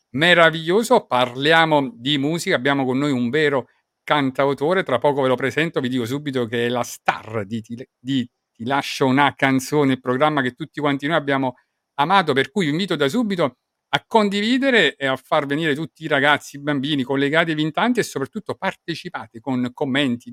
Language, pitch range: Italian, 135-185 Hz